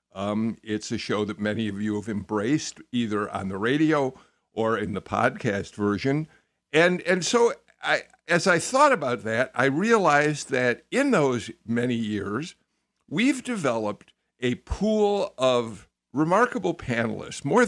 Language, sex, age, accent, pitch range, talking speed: English, male, 60-79, American, 110-175 Hz, 145 wpm